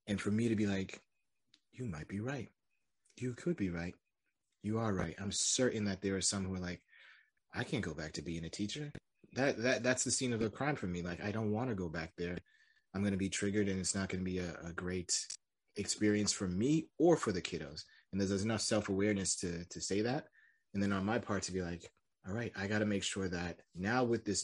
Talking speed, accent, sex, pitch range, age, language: 245 wpm, American, male, 90-105 Hz, 30-49, English